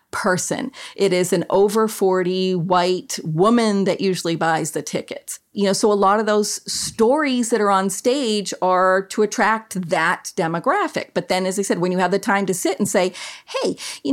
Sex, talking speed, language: female, 195 wpm, English